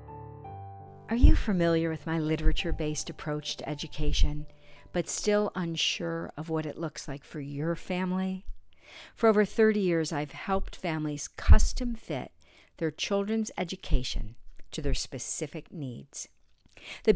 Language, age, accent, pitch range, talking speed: English, 50-69, American, 140-185 Hz, 130 wpm